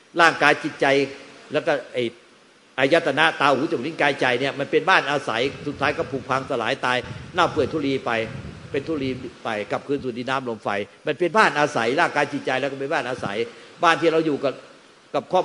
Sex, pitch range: male, 135-170 Hz